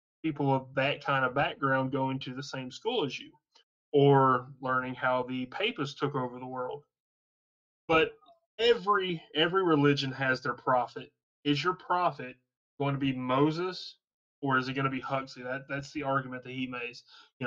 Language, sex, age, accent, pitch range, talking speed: English, male, 20-39, American, 130-155 Hz, 175 wpm